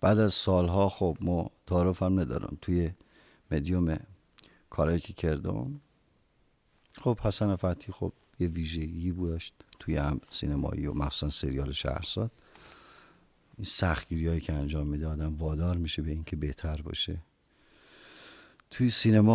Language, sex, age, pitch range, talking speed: Persian, male, 50-69, 75-95 Hz, 125 wpm